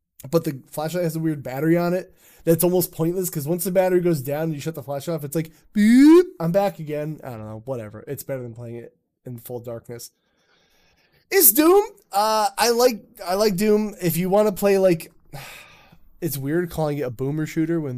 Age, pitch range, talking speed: 20-39, 135-185 Hz, 215 wpm